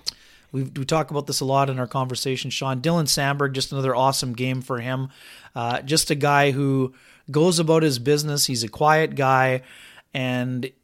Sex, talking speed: male, 185 wpm